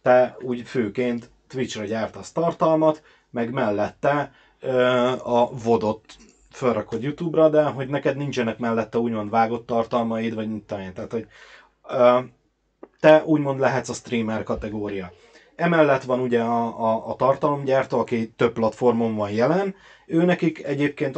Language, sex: Hungarian, male